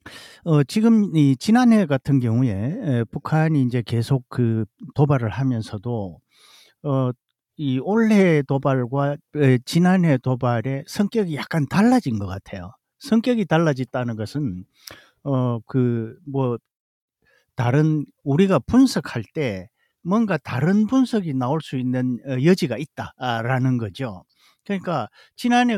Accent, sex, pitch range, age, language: native, male, 125-175 Hz, 50-69, Korean